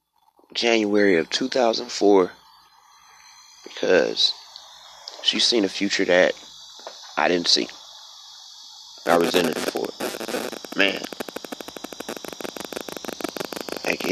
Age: 30-49